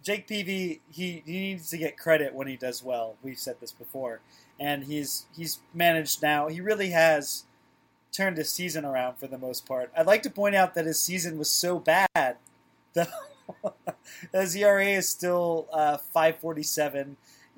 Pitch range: 140-185 Hz